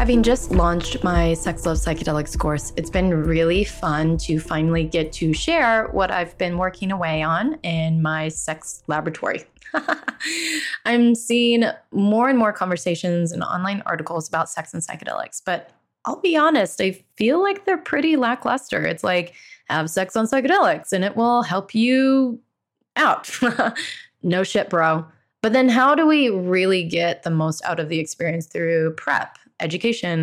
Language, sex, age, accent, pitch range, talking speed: English, female, 20-39, American, 165-230 Hz, 160 wpm